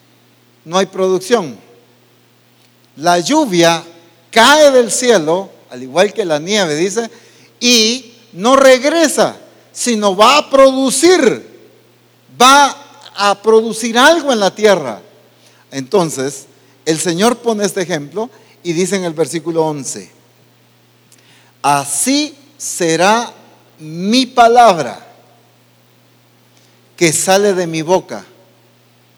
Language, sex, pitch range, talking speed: English, male, 135-220 Hz, 100 wpm